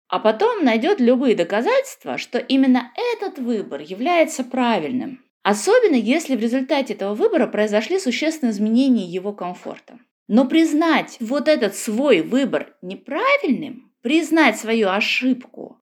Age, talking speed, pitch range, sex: 20-39, 120 wpm, 205-275 Hz, female